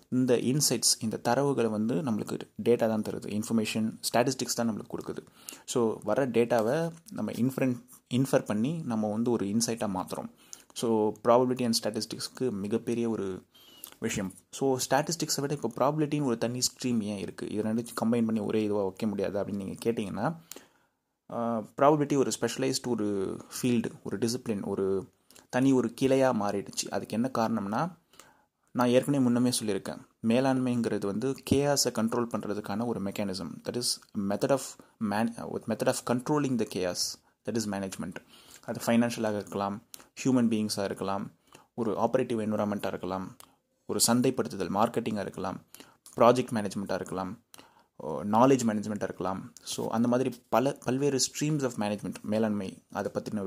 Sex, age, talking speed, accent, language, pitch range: male, 20-39, 135 wpm, native, Tamil, 105-130 Hz